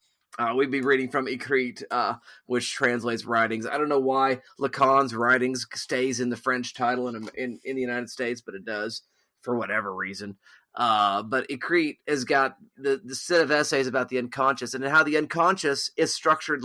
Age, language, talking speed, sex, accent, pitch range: 30-49, English, 185 wpm, male, American, 125-145 Hz